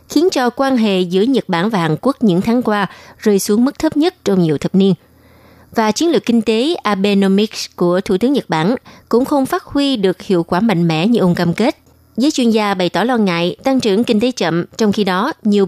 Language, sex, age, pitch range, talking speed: Vietnamese, female, 20-39, 175-230 Hz, 235 wpm